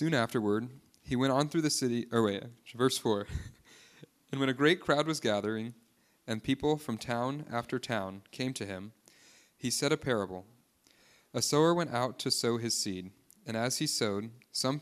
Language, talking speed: English, 180 wpm